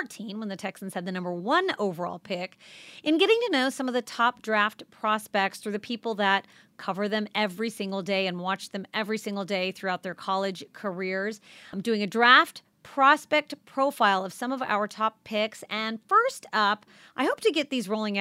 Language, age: English, 30-49